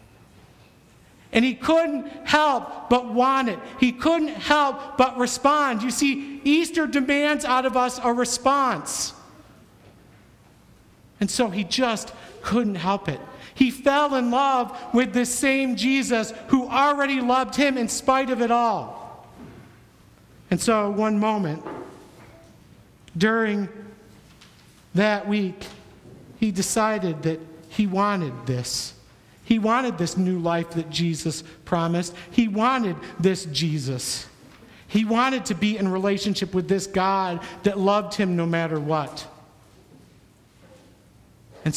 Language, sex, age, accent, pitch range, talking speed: English, male, 50-69, American, 185-260 Hz, 125 wpm